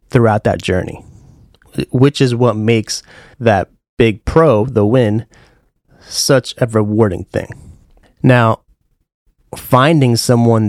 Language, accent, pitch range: English, American, 105-125 Hz